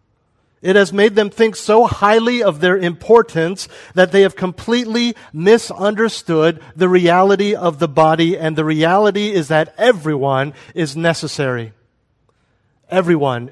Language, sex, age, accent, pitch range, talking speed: English, male, 40-59, American, 125-185 Hz, 130 wpm